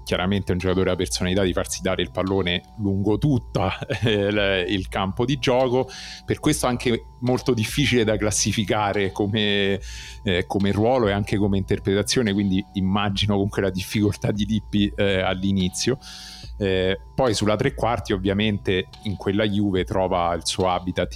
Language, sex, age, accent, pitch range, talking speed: Italian, male, 40-59, native, 90-105 Hz, 155 wpm